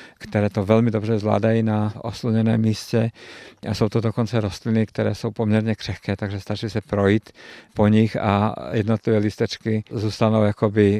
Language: Czech